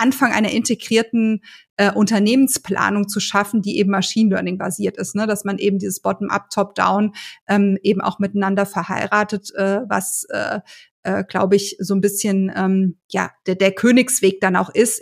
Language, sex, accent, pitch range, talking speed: German, female, German, 195-215 Hz, 150 wpm